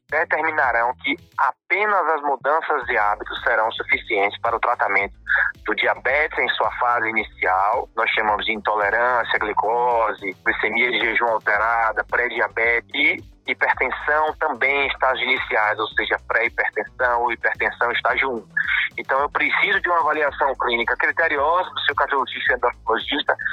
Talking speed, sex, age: 135 wpm, male, 20-39